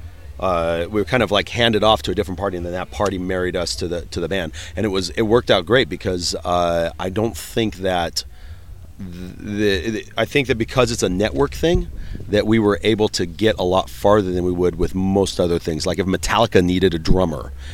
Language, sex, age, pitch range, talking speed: English, male, 40-59, 85-105 Hz, 230 wpm